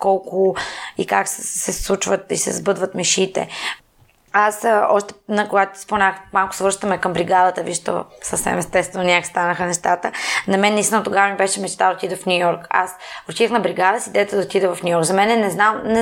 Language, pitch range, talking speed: Bulgarian, 185-220 Hz, 195 wpm